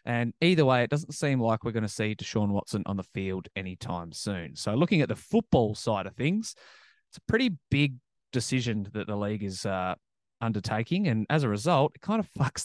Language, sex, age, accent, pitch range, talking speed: English, male, 20-39, Australian, 110-135 Hz, 215 wpm